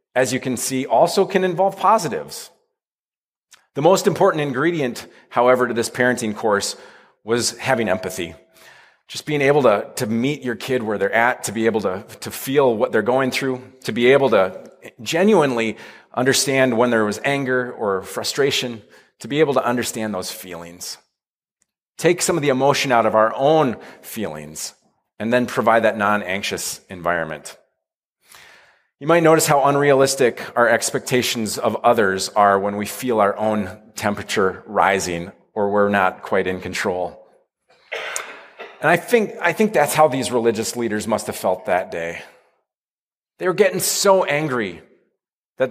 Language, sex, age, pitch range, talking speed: English, male, 30-49, 110-145 Hz, 160 wpm